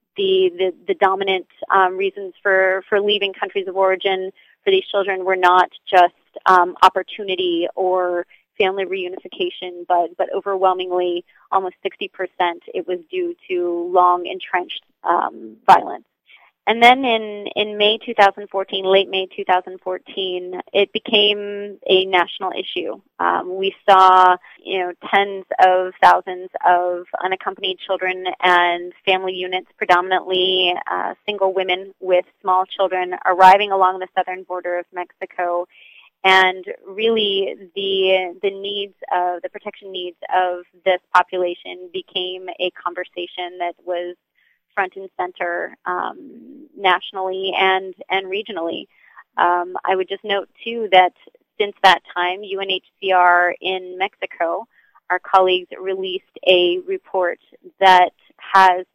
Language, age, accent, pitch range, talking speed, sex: English, 30-49, American, 180-200 Hz, 125 wpm, female